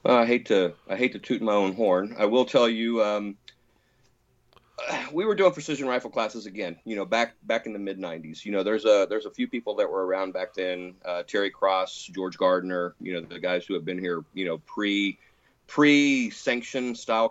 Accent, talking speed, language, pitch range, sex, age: American, 220 wpm, English, 100-120 Hz, male, 40-59